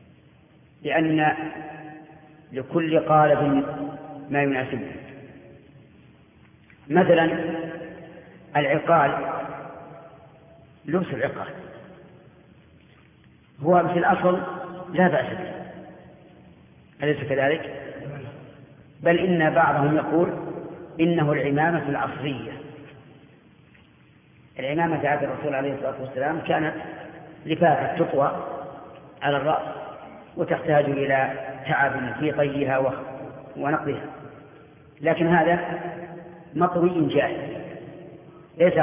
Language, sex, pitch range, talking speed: Arabic, female, 140-170 Hz, 70 wpm